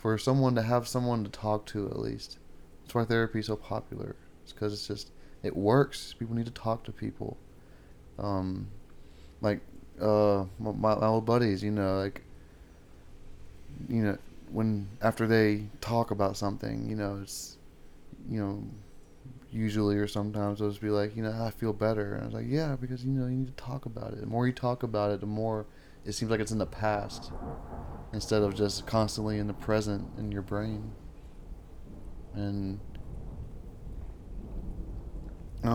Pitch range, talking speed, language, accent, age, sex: 95-110 Hz, 175 wpm, English, American, 20-39, male